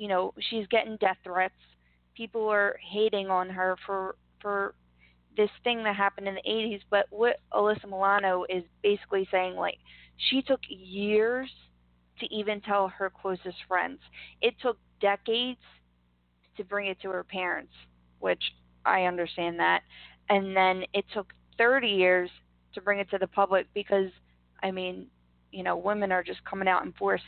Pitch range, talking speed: 180-215 Hz, 165 wpm